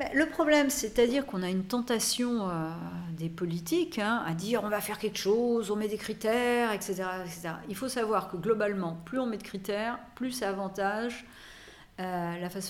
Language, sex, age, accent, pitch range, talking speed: French, female, 50-69, French, 165-210 Hz, 200 wpm